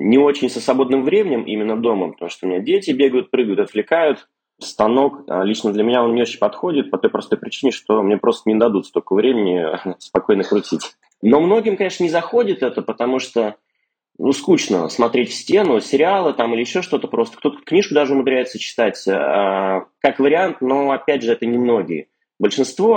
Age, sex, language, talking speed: 20-39, male, Russian, 180 wpm